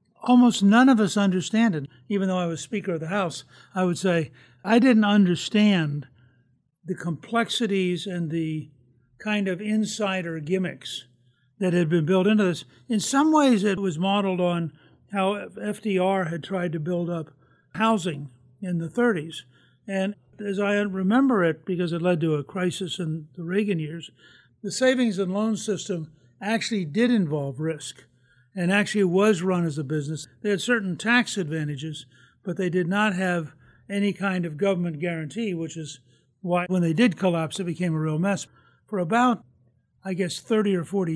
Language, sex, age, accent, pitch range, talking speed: English, male, 60-79, American, 160-200 Hz, 170 wpm